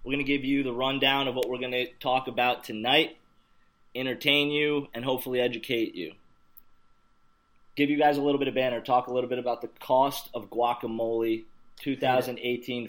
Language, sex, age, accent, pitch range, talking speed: English, male, 20-39, American, 105-125 Hz, 180 wpm